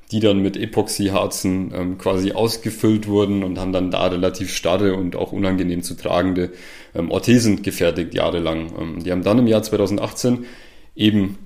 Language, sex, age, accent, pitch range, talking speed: German, male, 30-49, German, 95-110 Hz, 160 wpm